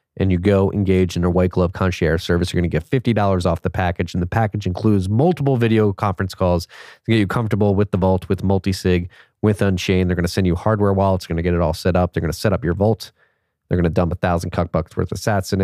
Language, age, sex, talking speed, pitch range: English, 30-49, male, 275 wpm, 90-110 Hz